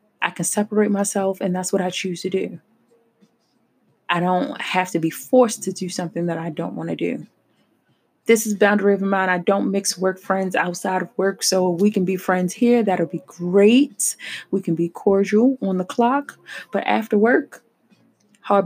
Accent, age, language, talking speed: American, 20-39, English, 195 wpm